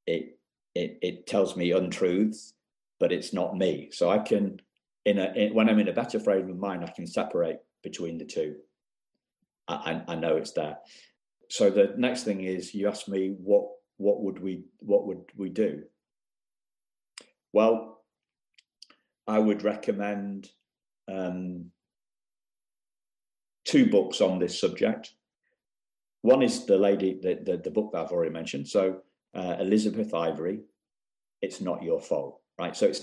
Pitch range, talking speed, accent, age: 95-125 Hz, 155 wpm, British, 50-69